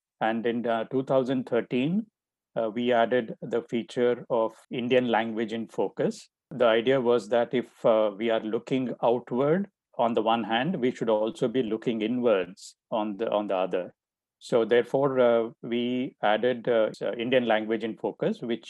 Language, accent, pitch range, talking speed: English, Indian, 110-130 Hz, 160 wpm